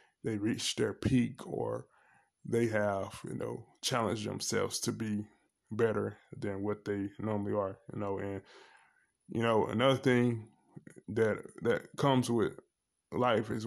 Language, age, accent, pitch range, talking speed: English, 20-39, American, 105-115 Hz, 140 wpm